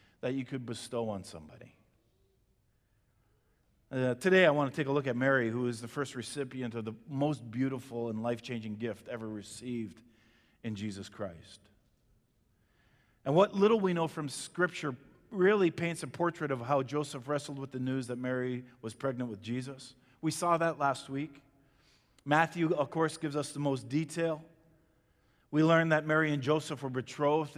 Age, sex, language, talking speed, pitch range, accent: 50-69, male, English, 170 wpm, 125-155 Hz, American